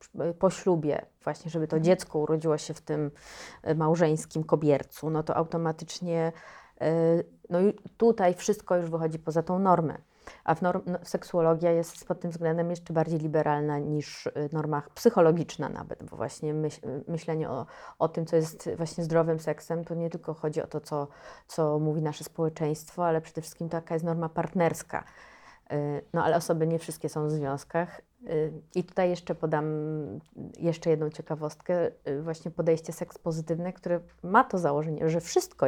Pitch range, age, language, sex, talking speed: 155-175 Hz, 30-49, Polish, female, 150 wpm